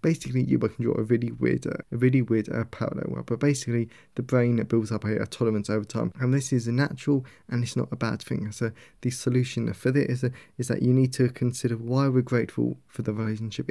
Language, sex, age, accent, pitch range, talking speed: English, male, 20-39, British, 110-130 Hz, 235 wpm